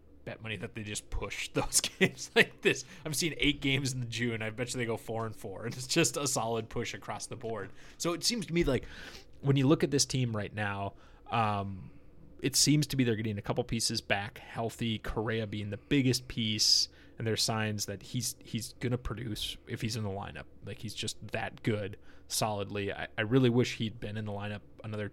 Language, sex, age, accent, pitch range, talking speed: English, male, 20-39, American, 105-125 Hz, 220 wpm